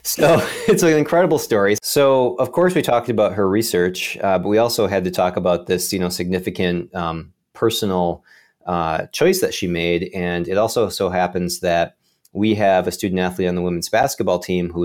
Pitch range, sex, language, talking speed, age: 90-110 Hz, male, English, 200 wpm, 30-49